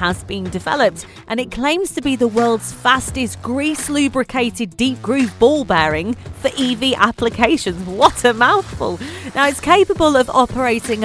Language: English